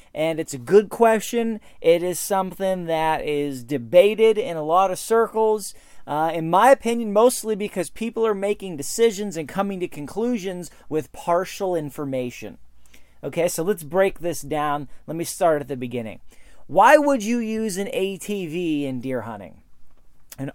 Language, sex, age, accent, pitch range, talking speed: English, male, 30-49, American, 150-220 Hz, 160 wpm